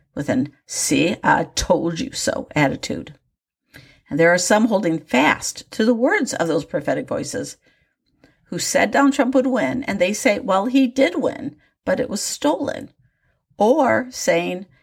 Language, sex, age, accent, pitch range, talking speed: English, female, 50-69, American, 175-270 Hz, 160 wpm